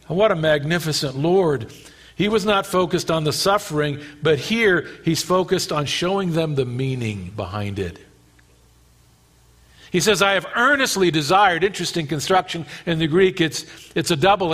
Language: English